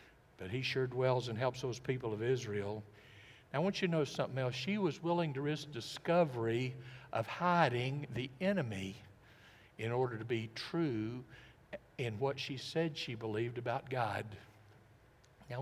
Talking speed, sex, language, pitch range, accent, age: 160 wpm, male, English, 125-175 Hz, American, 60-79